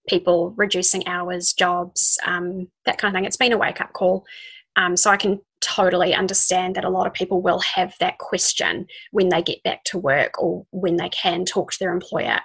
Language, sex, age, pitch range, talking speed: English, female, 20-39, 185-225 Hz, 205 wpm